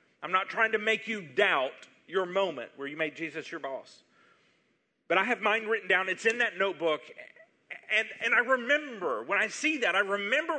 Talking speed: 200 wpm